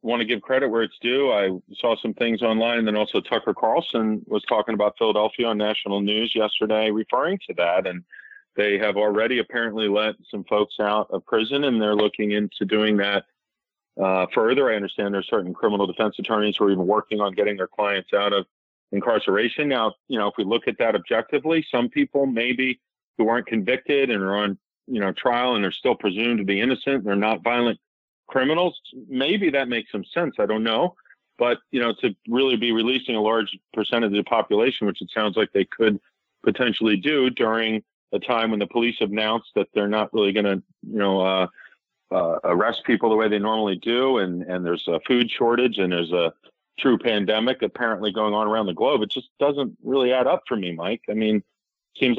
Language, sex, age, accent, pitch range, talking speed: English, male, 40-59, American, 105-120 Hz, 205 wpm